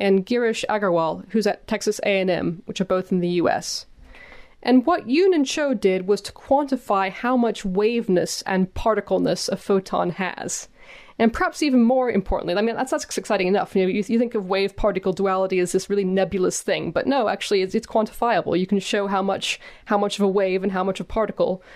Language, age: English, 20-39